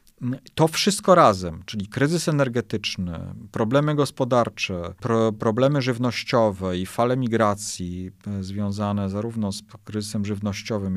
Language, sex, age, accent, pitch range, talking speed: Polish, male, 40-59, native, 100-120 Hz, 100 wpm